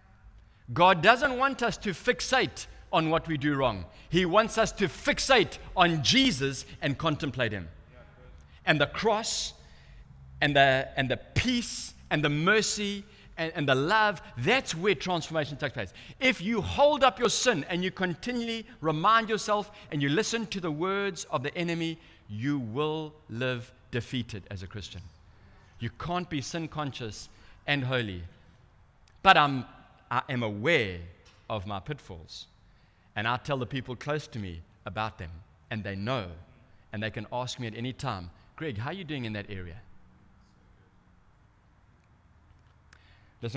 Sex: male